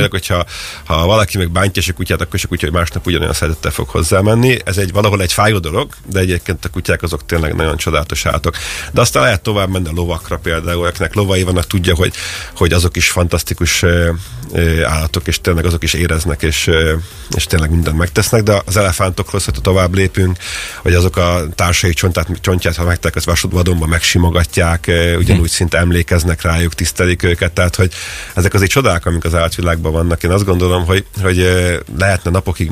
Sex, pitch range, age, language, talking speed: male, 85-95 Hz, 30-49, Hungarian, 180 wpm